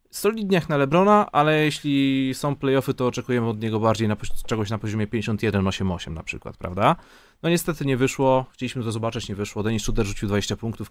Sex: male